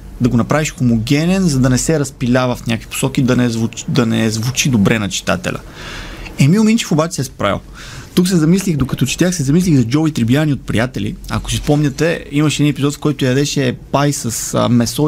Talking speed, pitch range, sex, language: 205 wpm, 130-160 Hz, male, Bulgarian